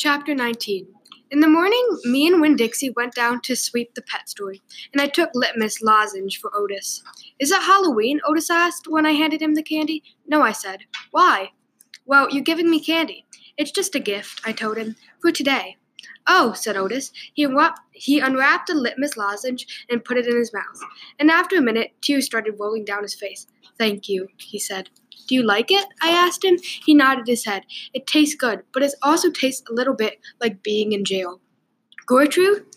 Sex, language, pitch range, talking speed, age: female, English, 220-310 Hz, 195 wpm, 10-29